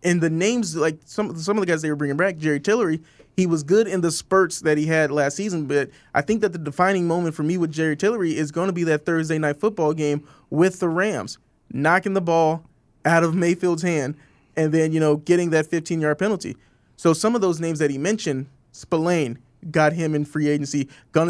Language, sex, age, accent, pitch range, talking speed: English, male, 20-39, American, 150-180 Hz, 225 wpm